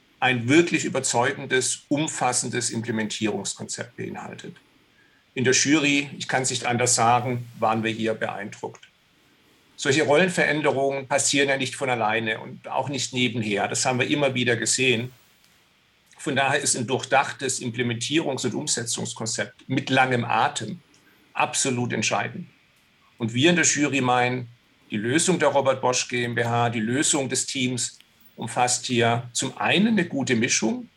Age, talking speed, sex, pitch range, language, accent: 50-69, 135 wpm, male, 120-135 Hz, German, German